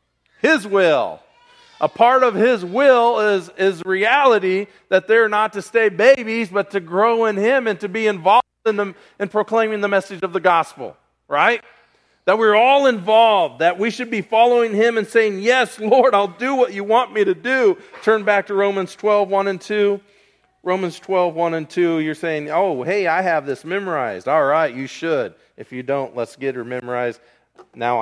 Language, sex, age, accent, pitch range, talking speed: English, male, 40-59, American, 135-205 Hz, 195 wpm